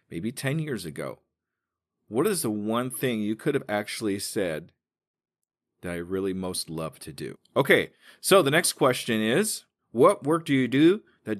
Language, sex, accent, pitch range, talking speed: English, male, American, 115-140 Hz, 175 wpm